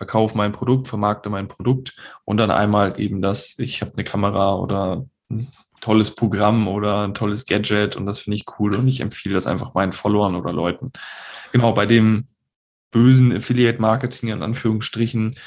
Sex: male